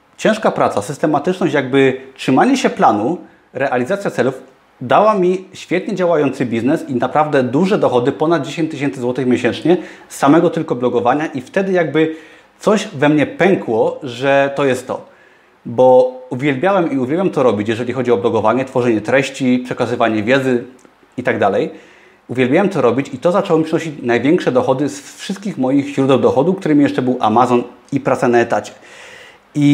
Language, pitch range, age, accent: Polish, 130-170 Hz, 30-49, native